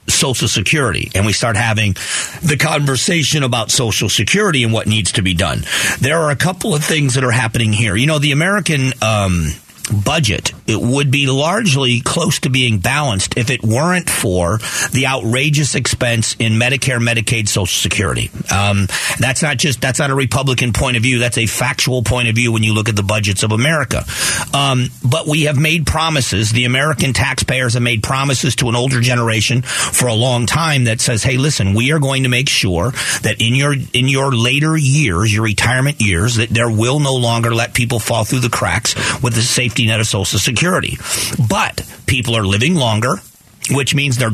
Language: English